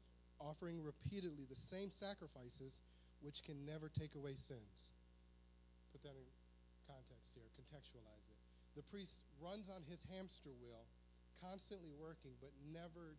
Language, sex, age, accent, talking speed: English, male, 40-59, American, 130 wpm